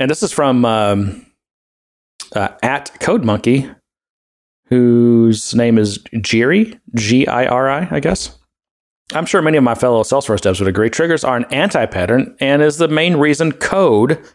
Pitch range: 100-135 Hz